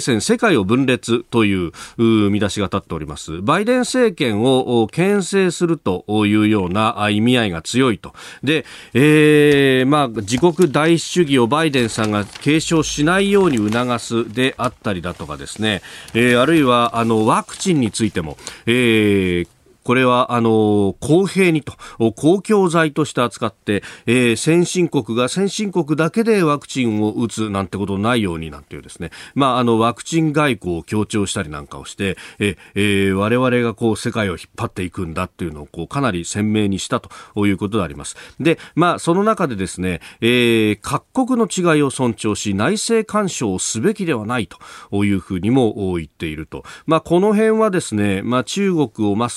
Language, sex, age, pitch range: Japanese, male, 40-59, 100-155 Hz